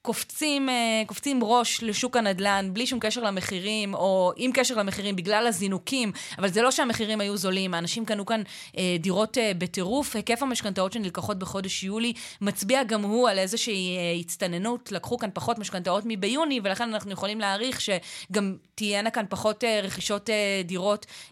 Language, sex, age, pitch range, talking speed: Hebrew, female, 20-39, 185-220 Hz, 145 wpm